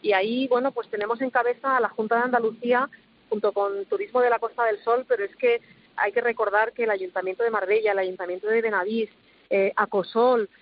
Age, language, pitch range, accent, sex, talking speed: 40-59, Spanish, 210-265 Hz, Spanish, female, 210 wpm